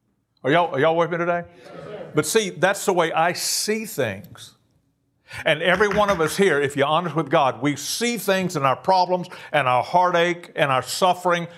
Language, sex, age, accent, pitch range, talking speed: English, male, 60-79, American, 135-175 Hz, 190 wpm